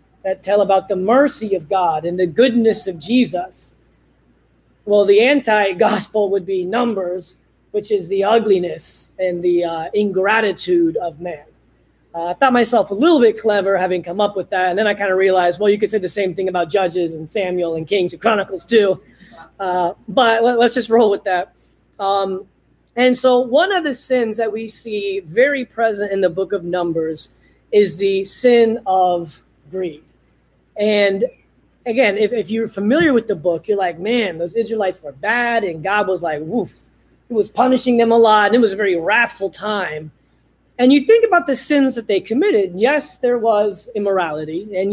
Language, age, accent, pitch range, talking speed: English, 30-49, American, 180-230 Hz, 185 wpm